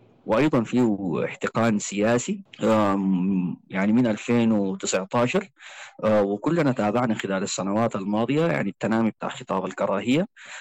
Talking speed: 95 wpm